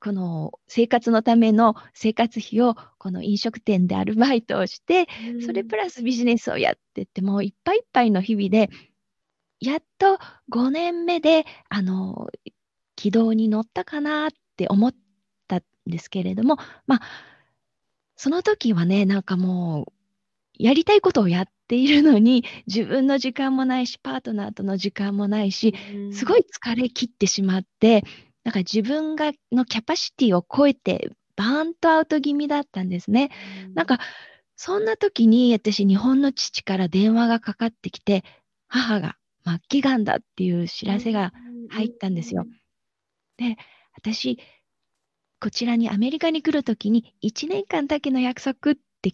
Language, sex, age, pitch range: Japanese, female, 20-39, 200-265 Hz